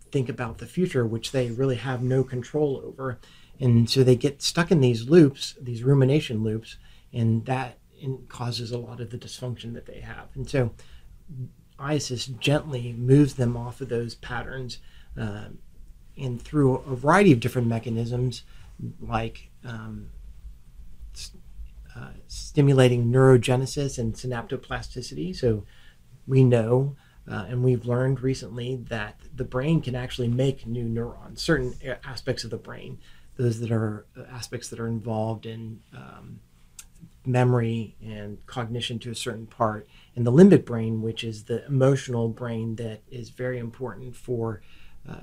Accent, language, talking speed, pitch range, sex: American, English, 145 wpm, 115-130 Hz, male